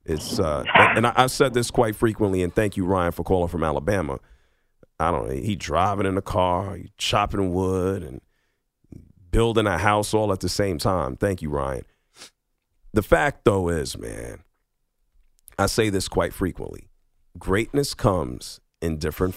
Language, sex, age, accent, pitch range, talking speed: English, male, 40-59, American, 95-120 Hz, 160 wpm